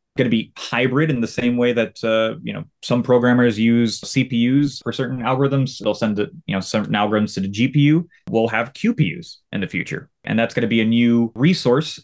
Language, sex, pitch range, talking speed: English, male, 110-140 Hz, 215 wpm